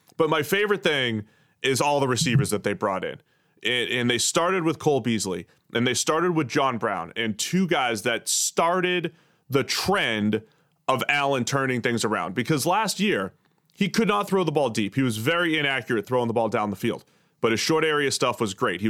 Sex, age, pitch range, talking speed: male, 30-49, 115-160 Hz, 205 wpm